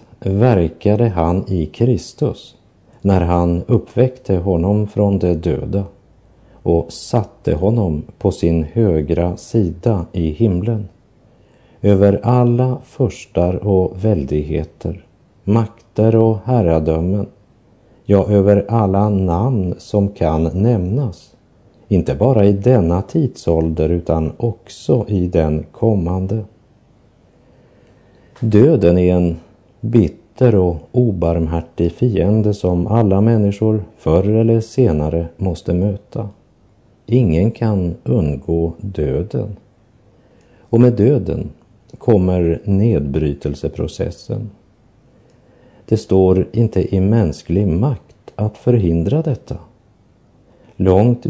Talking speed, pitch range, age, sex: 90 wpm, 90-115 Hz, 50-69, male